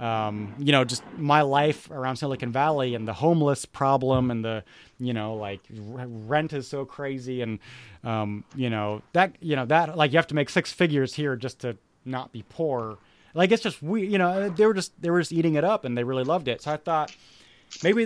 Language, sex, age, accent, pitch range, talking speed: English, male, 30-49, American, 125-165 Hz, 220 wpm